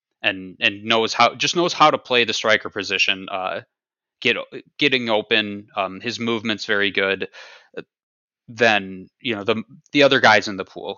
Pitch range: 100-130 Hz